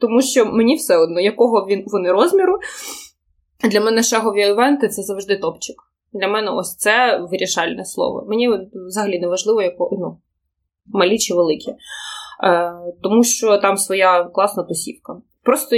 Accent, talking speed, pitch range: native, 150 wpm, 180-255 Hz